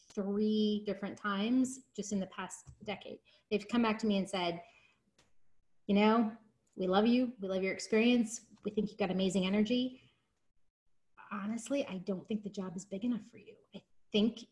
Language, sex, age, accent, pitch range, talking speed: English, female, 30-49, American, 195-240 Hz, 180 wpm